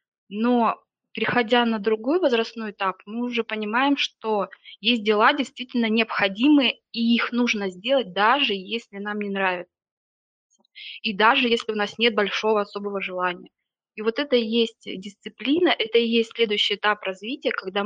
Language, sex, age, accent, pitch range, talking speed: Russian, female, 20-39, native, 205-235 Hz, 150 wpm